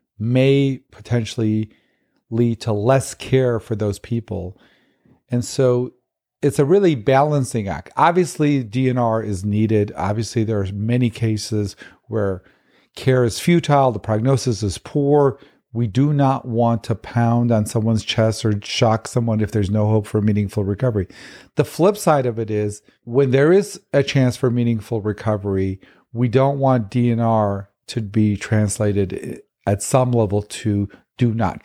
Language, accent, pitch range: English, American, 105-130 Hz